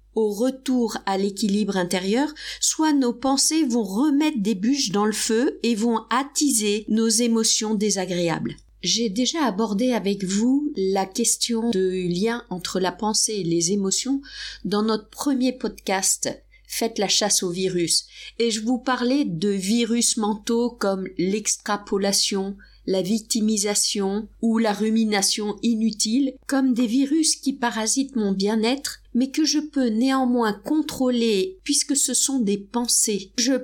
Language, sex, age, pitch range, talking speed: French, female, 50-69, 205-255 Hz, 145 wpm